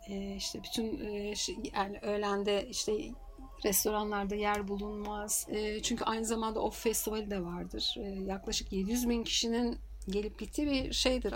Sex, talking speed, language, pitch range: female, 125 wpm, Turkish, 195-235 Hz